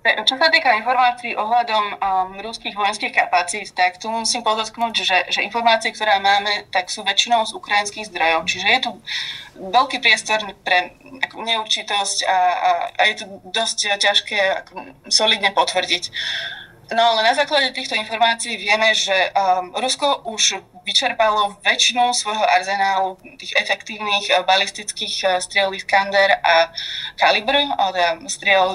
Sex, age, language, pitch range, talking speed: female, 20-39, Slovak, 190-230 Hz, 130 wpm